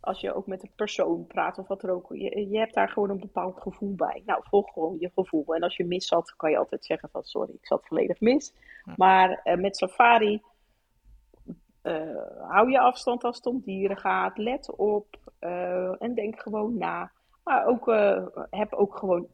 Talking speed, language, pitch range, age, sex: 205 wpm, Dutch, 185-235 Hz, 40-59, female